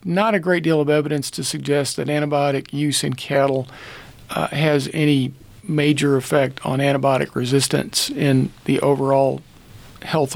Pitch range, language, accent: 135-155 Hz, English, American